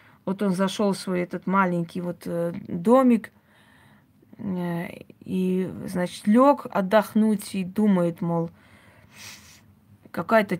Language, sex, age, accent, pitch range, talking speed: Russian, female, 20-39, native, 175-210 Hz, 95 wpm